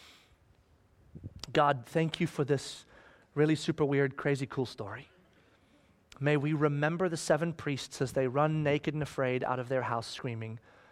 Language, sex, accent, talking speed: English, male, American, 155 wpm